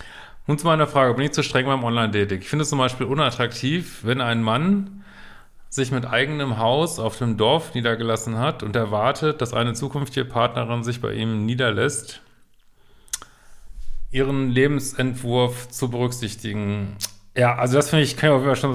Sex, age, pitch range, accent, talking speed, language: male, 40-59, 115-135 Hz, German, 165 wpm, German